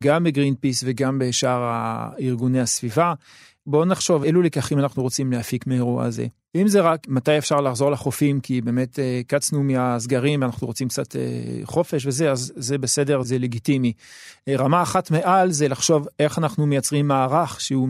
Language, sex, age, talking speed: Hebrew, male, 40-59, 160 wpm